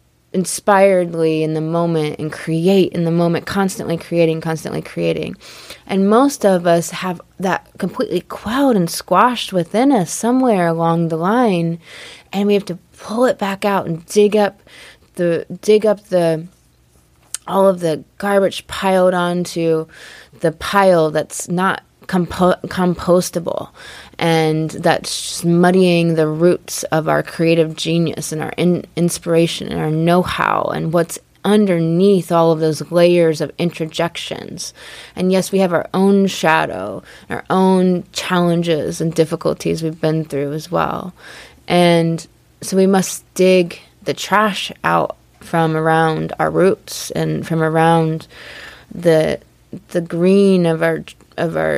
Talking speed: 135 wpm